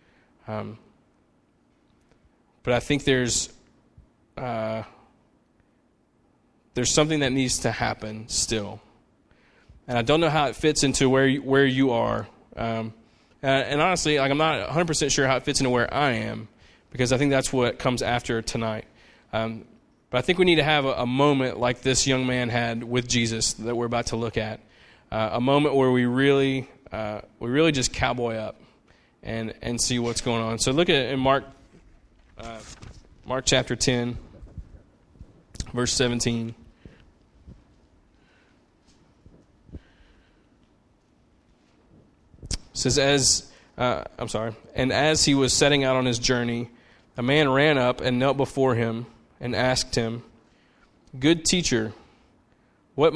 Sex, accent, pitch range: male, American, 115-135 Hz